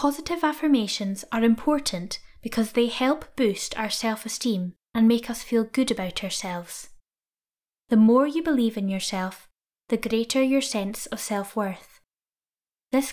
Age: 10-29